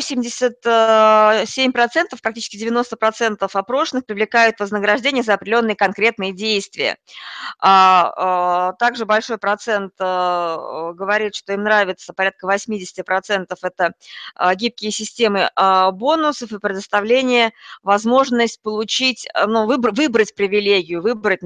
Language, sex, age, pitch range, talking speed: Russian, female, 20-39, 195-250 Hz, 85 wpm